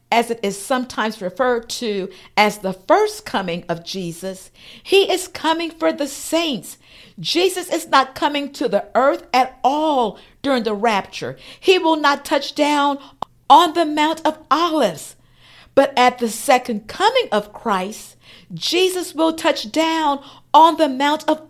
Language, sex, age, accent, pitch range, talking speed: English, female, 50-69, American, 240-320 Hz, 155 wpm